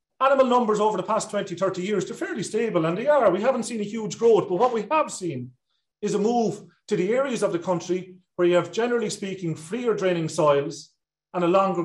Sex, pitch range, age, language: male, 175-225 Hz, 40-59, English